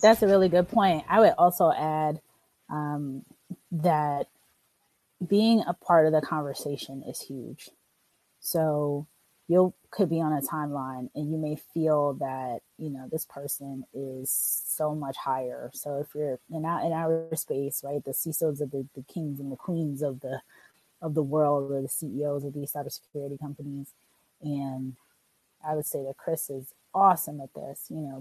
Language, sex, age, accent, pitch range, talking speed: English, female, 30-49, American, 140-165 Hz, 170 wpm